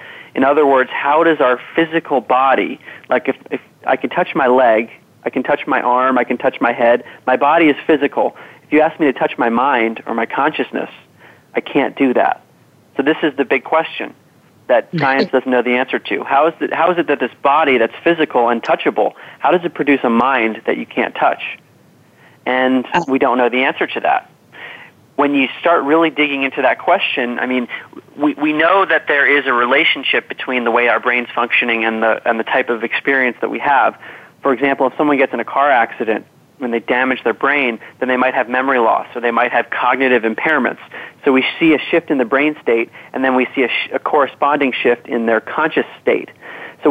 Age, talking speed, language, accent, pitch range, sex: 30-49, 215 wpm, English, American, 120-145 Hz, male